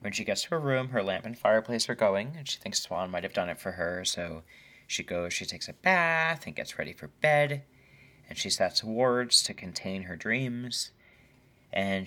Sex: male